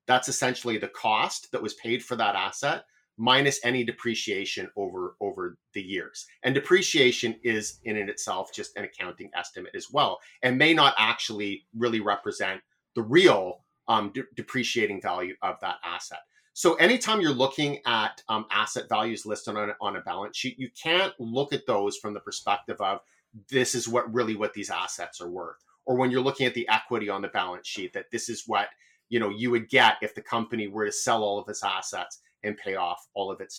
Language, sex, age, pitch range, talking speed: English, male, 30-49, 110-170 Hz, 200 wpm